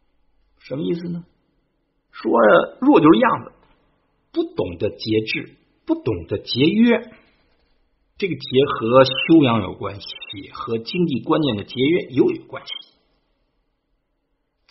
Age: 50-69